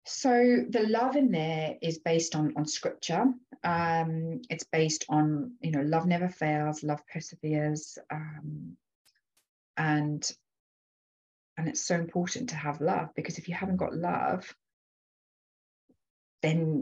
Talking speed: 130 wpm